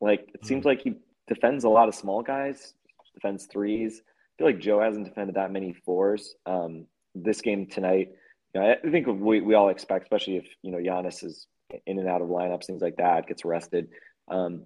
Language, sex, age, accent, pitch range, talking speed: English, male, 30-49, American, 85-105 Hz, 210 wpm